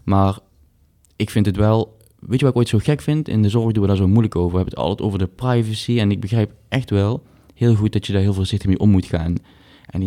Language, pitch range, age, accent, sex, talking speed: Dutch, 90-110 Hz, 20-39, Dutch, male, 280 wpm